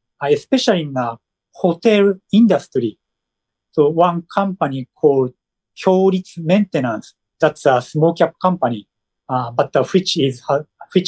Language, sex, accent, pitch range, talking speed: English, male, Japanese, 130-180 Hz, 120 wpm